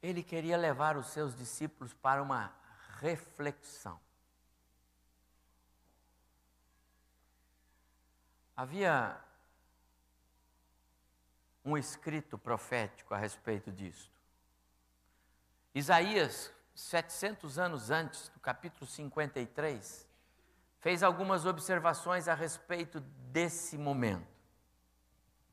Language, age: Portuguese, 60-79